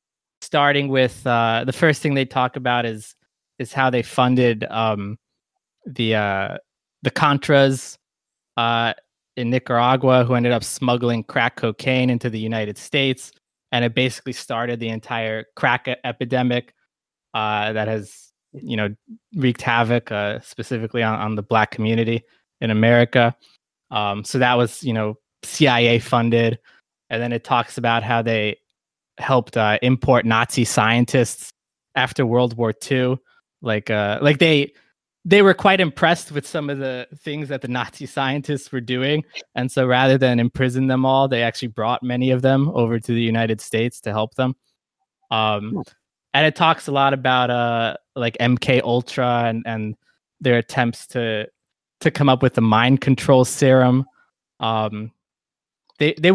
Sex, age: male, 20-39